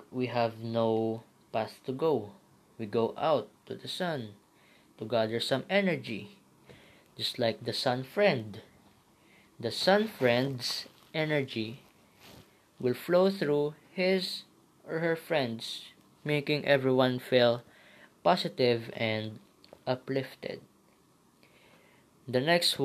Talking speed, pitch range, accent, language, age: 105 wpm, 115-155 Hz, Filipino, English, 20-39